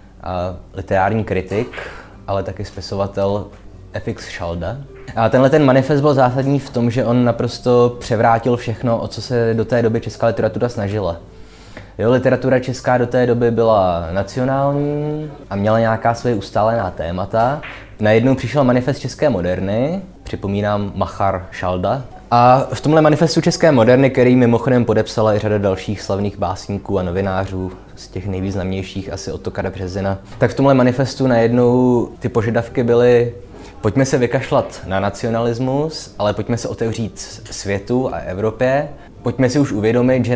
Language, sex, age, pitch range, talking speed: Czech, male, 20-39, 100-125 Hz, 150 wpm